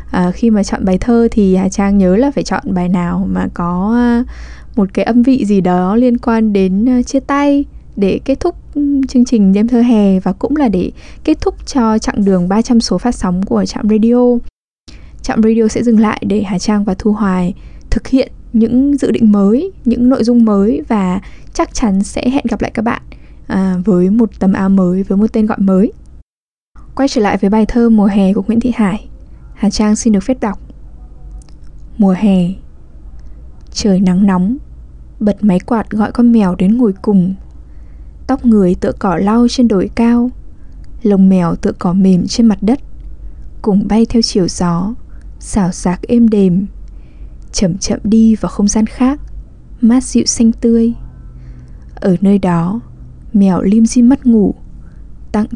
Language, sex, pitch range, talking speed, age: English, female, 190-235 Hz, 185 wpm, 10-29